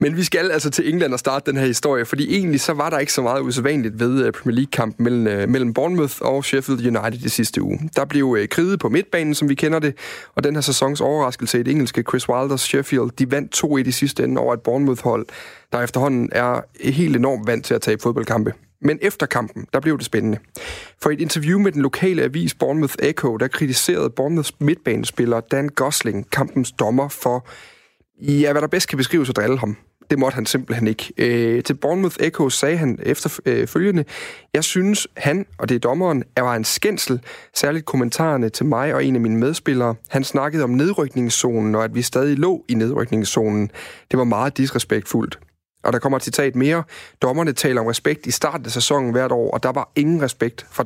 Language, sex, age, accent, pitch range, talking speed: Danish, male, 30-49, native, 120-150 Hz, 205 wpm